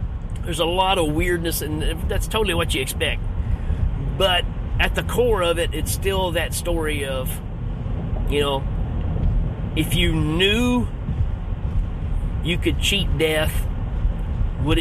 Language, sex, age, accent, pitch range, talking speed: English, male, 30-49, American, 85-100 Hz, 130 wpm